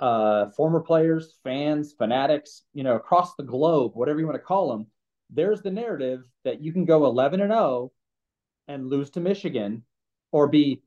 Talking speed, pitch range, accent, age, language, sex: 165 wpm, 130-165 Hz, American, 30-49, English, male